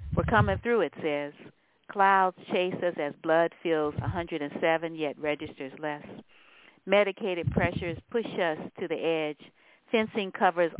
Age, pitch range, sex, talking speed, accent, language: 50-69, 150-190 Hz, female, 135 wpm, American, English